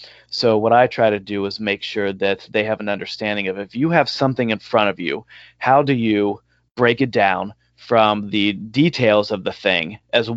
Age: 30-49